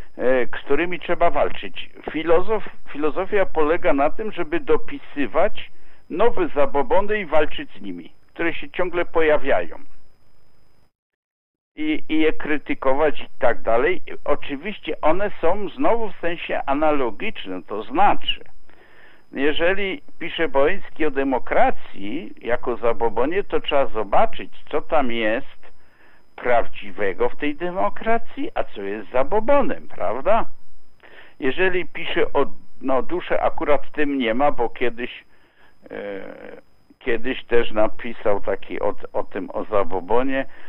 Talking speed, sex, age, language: 115 wpm, male, 60-79, Polish